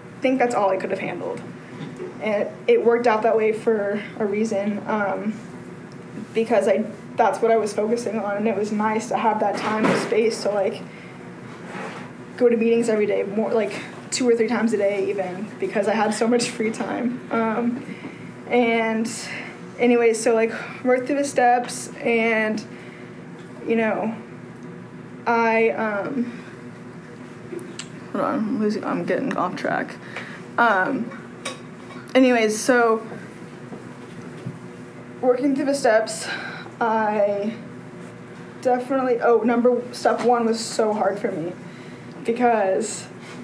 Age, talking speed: 10-29, 135 wpm